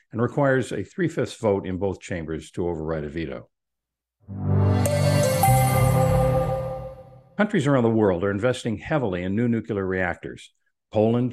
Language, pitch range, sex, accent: English, 100-135 Hz, male, American